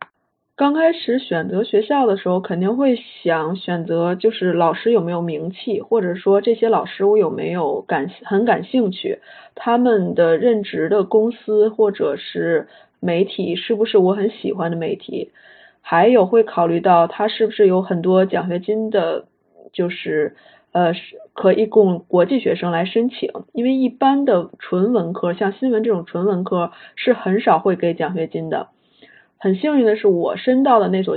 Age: 20-39